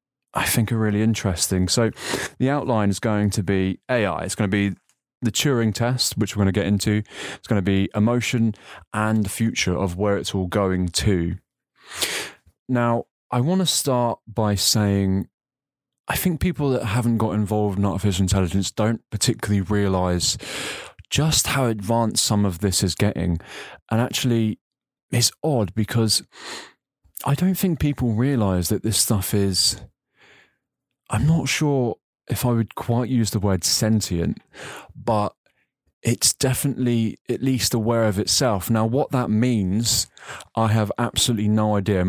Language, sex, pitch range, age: English, male, 100-120 Hz, 20-39